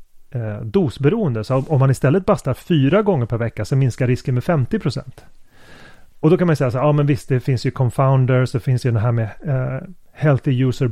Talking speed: 215 wpm